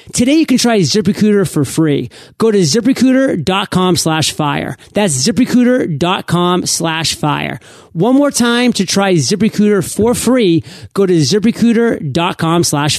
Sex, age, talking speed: male, 30-49, 130 wpm